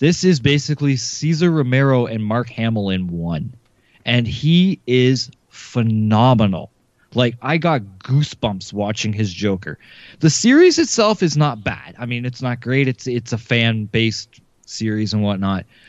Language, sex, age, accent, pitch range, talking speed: English, male, 20-39, American, 110-145 Hz, 145 wpm